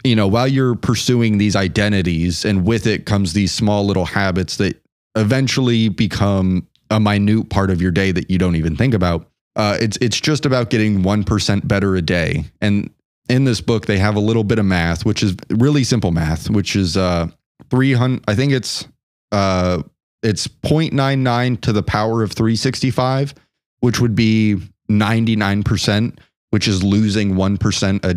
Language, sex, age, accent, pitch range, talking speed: English, male, 30-49, American, 95-115 Hz, 185 wpm